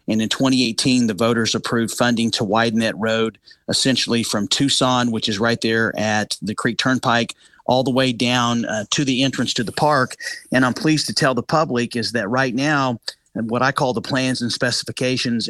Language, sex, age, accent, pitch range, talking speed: English, male, 40-59, American, 115-130 Hz, 200 wpm